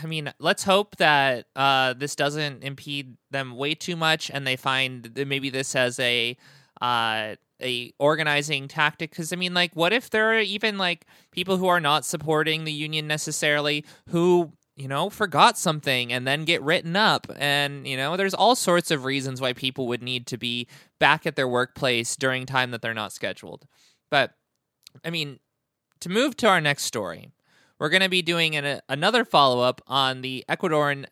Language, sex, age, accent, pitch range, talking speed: English, male, 20-39, American, 135-170 Hz, 185 wpm